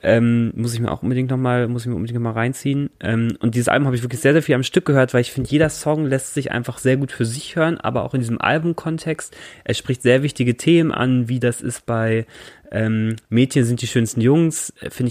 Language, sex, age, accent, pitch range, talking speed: German, male, 20-39, German, 110-125 Hz, 240 wpm